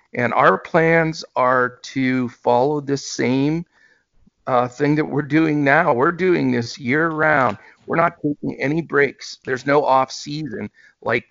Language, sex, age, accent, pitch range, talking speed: English, male, 50-69, American, 120-150 Hz, 155 wpm